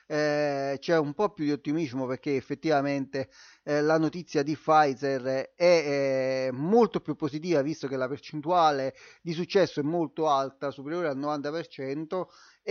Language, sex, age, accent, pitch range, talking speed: Italian, male, 30-49, native, 140-170 Hz, 145 wpm